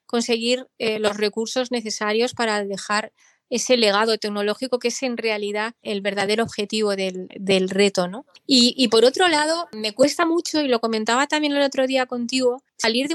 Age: 20-39